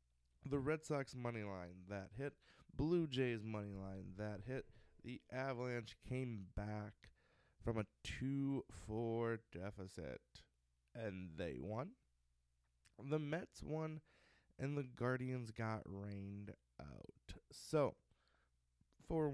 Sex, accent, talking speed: male, American, 110 wpm